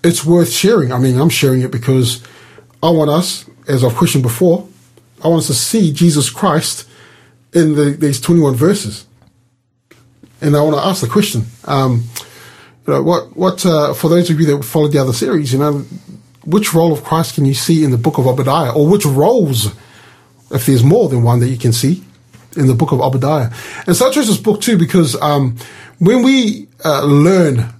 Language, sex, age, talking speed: English, male, 30-49, 205 wpm